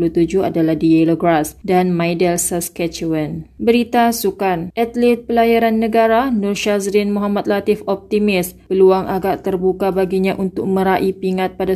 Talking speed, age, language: 120 wpm, 20-39, Malay